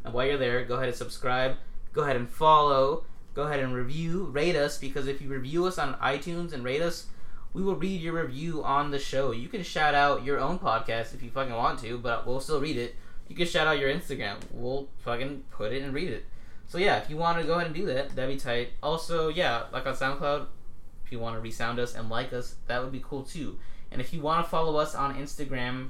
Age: 20-39